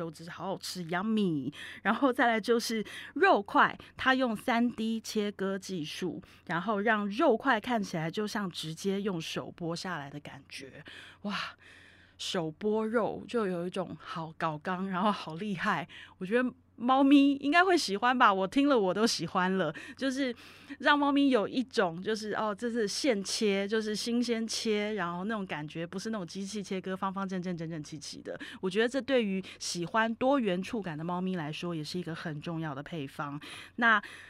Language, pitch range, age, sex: Chinese, 175-230 Hz, 20-39, female